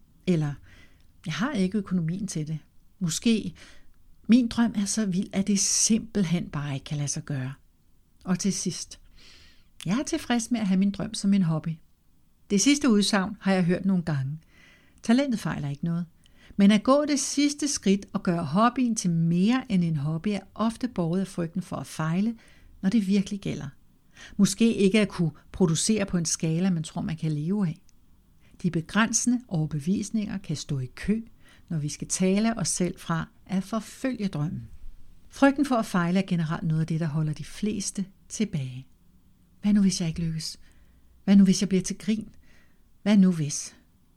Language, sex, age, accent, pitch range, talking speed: Danish, female, 60-79, native, 155-220 Hz, 185 wpm